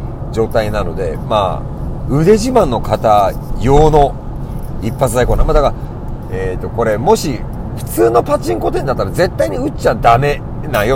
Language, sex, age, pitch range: Japanese, male, 40-59, 115-165 Hz